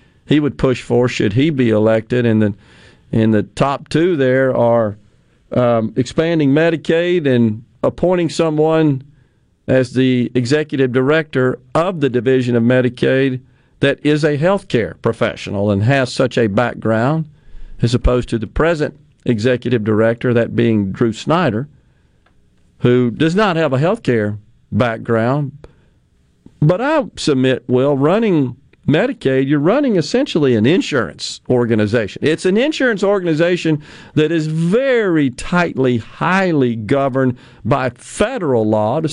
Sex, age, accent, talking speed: male, 50-69, American, 130 wpm